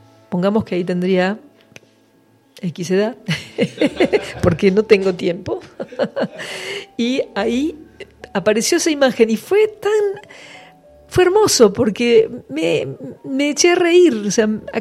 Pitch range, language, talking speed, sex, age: 160-220 Hz, Spanish, 120 wpm, female, 50-69